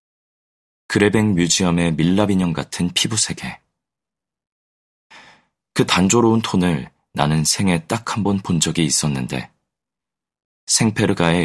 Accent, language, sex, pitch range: native, Korean, male, 75-100 Hz